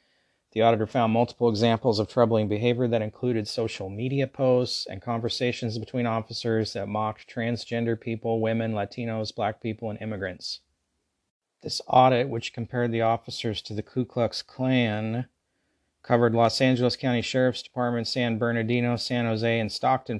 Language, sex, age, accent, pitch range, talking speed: English, male, 30-49, American, 110-120 Hz, 150 wpm